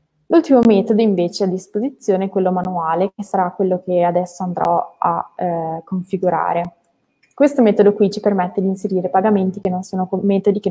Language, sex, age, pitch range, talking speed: Italian, female, 20-39, 180-205 Hz, 170 wpm